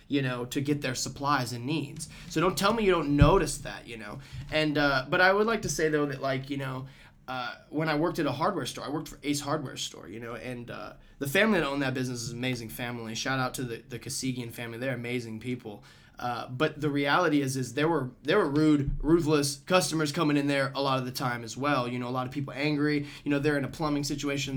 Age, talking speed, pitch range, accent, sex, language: 20-39, 255 wpm, 130-160 Hz, American, male, English